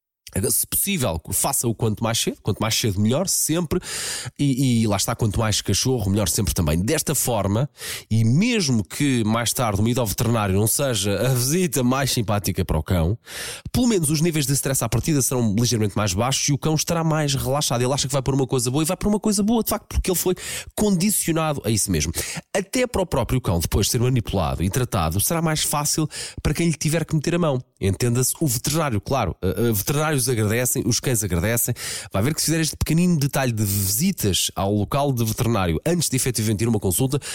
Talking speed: 215 wpm